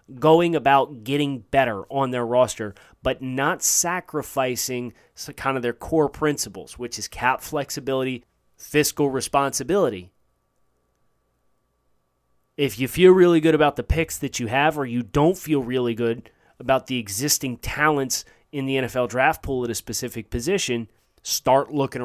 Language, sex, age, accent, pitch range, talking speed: English, male, 30-49, American, 115-150 Hz, 145 wpm